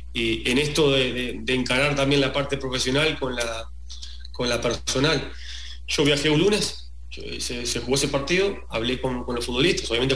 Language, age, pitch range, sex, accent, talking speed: English, 30-49, 115-140 Hz, male, Argentinian, 190 wpm